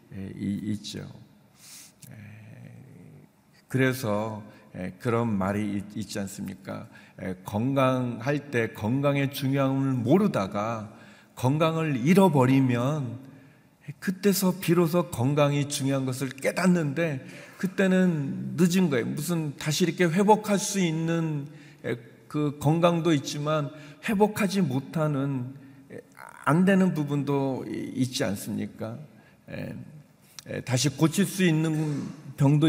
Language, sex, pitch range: Korean, male, 125-175 Hz